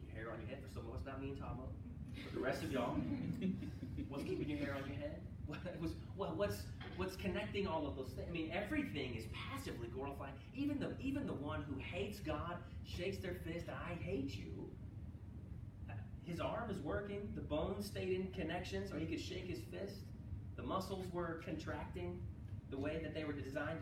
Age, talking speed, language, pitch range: 30-49, 195 wpm, English, 95-110 Hz